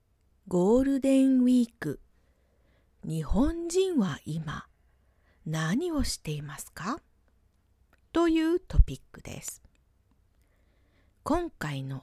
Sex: female